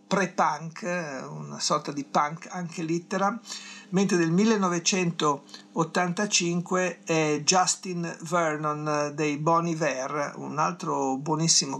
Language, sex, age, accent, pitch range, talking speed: Italian, male, 50-69, native, 145-180 Hz, 95 wpm